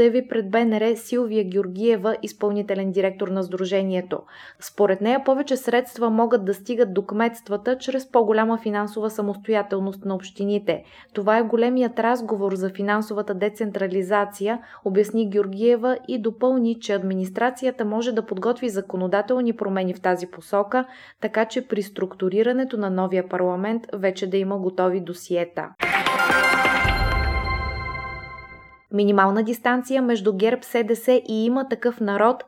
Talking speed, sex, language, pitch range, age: 120 wpm, female, Bulgarian, 200-235 Hz, 20-39